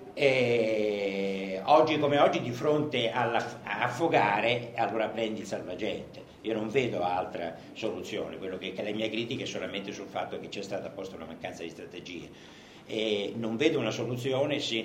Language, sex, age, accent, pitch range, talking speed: Italian, male, 60-79, native, 110-140 Hz, 160 wpm